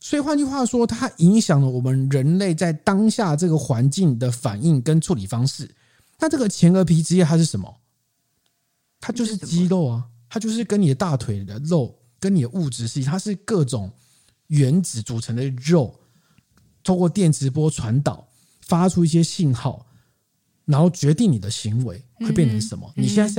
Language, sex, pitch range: Chinese, male, 125-180 Hz